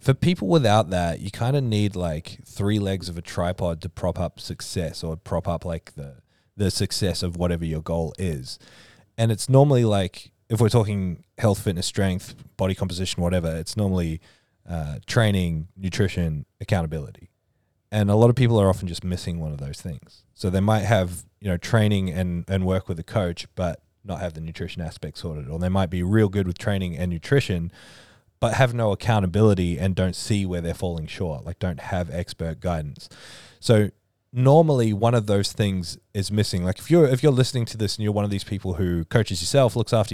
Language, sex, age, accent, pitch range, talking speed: English, male, 20-39, Australian, 90-110 Hz, 200 wpm